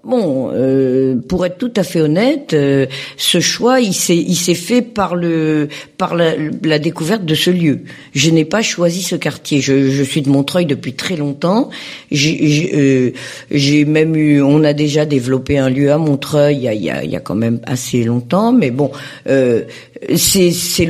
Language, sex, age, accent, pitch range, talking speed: French, female, 50-69, French, 140-190 Hz, 195 wpm